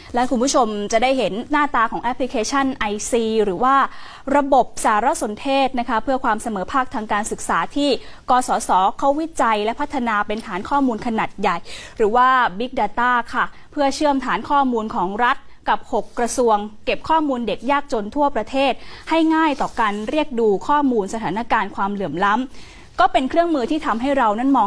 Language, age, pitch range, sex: Thai, 20-39, 220-280 Hz, female